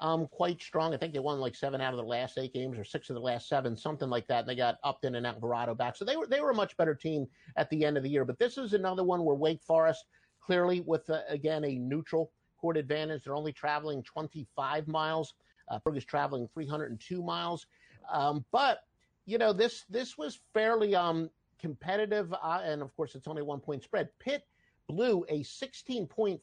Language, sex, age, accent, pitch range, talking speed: English, male, 50-69, American, 150-195 Hz, 220 wpm